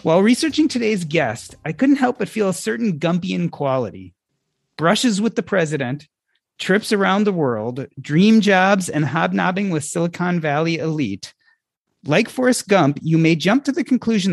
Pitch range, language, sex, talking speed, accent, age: 145-195 Hz, English, male, 160 wpm, American, 30-49